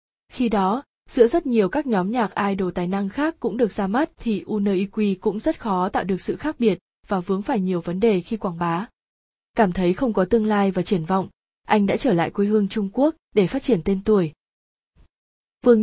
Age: 20-39